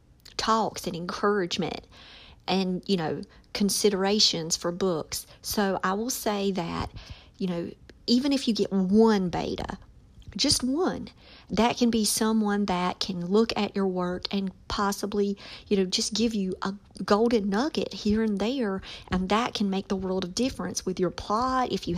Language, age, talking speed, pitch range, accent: English, 50-69, 165 wpm, 185-225 Hz, American